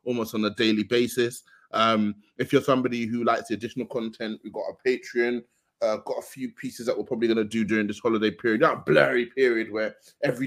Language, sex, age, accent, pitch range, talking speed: English, male, 20-39, British, 115-145 Hz, 220 wpm